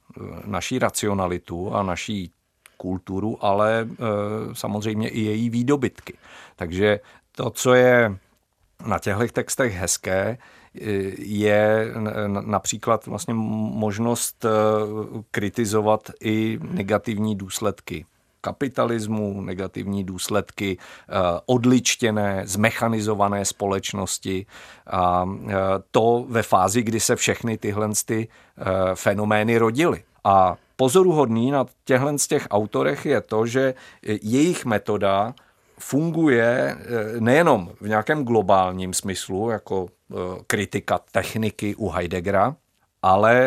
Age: 50-69